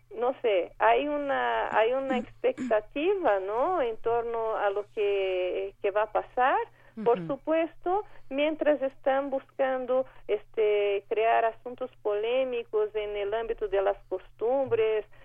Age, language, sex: 40-59, Spanish, female